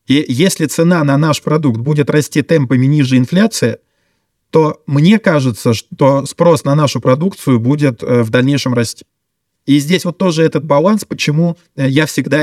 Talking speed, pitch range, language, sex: 155 wpm, 130-155 Hz, Russian, male